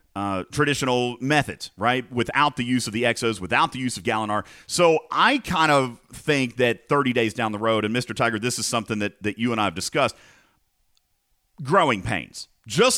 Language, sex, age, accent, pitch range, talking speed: English, male, 40-59, American, 115-150 Hz, 195 wpm